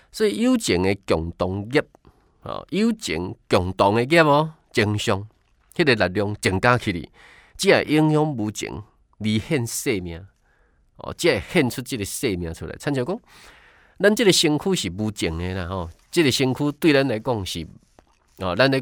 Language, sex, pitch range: Chinese, male, 95-140 Hz